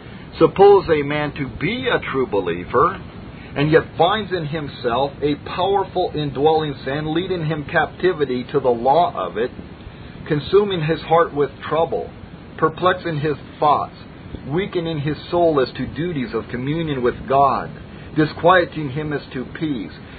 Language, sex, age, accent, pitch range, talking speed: English, male, 50-69, American, 130-155 Hz, 145 wpm